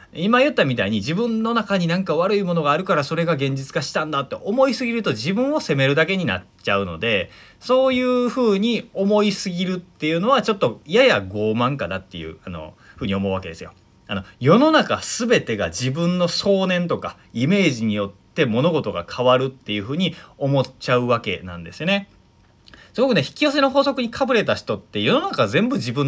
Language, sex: Japanese, male